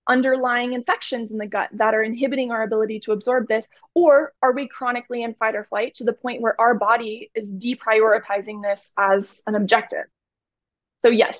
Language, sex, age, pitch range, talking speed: English, female, 20-39, 230-285 Hz, 185 wpm